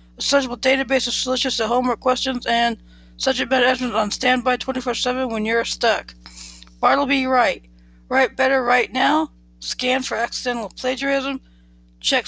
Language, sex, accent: English, female, American